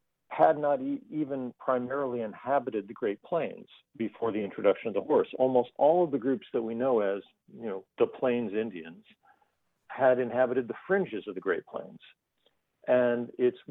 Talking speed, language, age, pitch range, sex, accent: 165 wpm, English, 50-69, 110-140 Hz, male, American